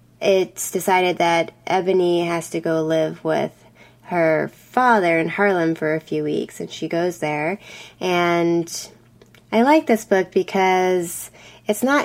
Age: 20-39